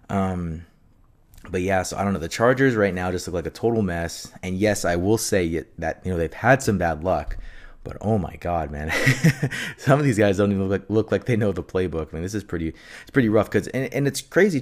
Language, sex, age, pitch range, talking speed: English, male, 20-39, 85-100 Hz, 255 wpm